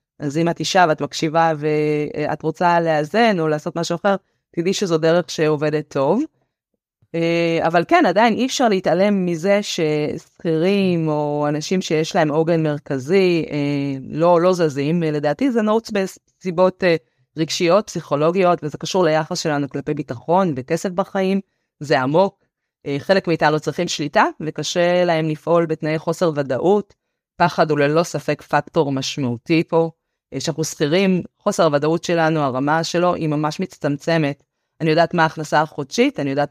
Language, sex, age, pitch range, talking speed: Hebrew, female, 30-49, 150-195 Hz, 140 wpm